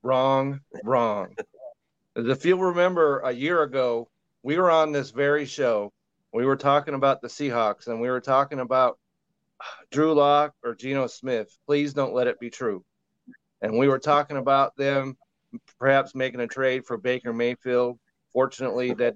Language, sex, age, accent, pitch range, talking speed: English, male, 40-59, American, 120-140 Hz, 160 wpm